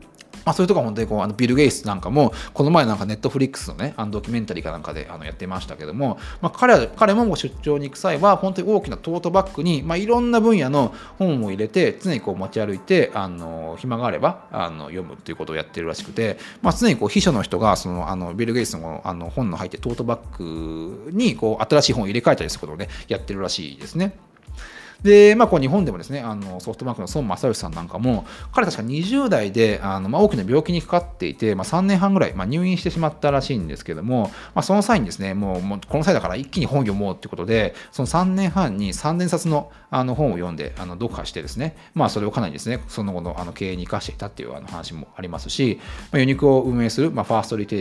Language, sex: Japanese, male